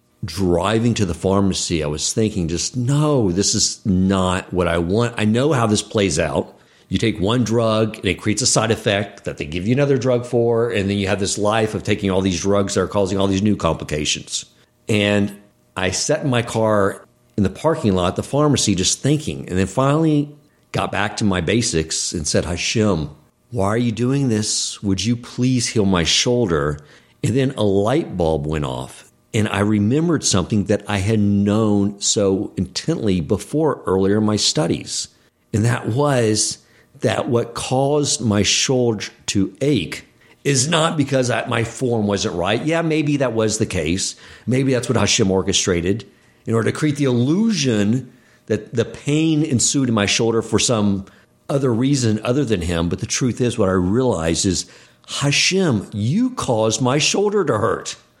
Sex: male